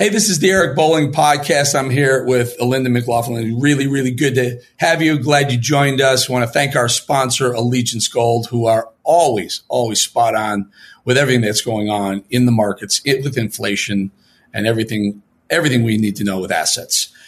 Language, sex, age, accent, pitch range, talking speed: English, male, 40-59, American, 120-185 Hz, 195 wpm